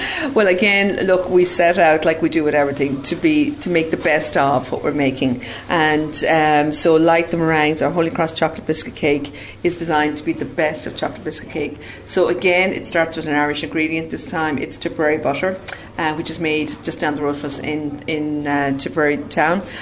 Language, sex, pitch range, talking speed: English, female, 150-170 Hz, 215 wpm